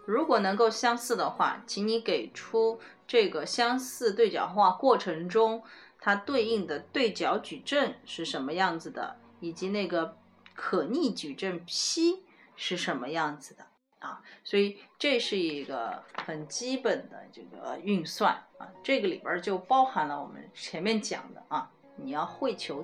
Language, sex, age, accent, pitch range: Chinese, female, 30-49, native, 180-260 Hz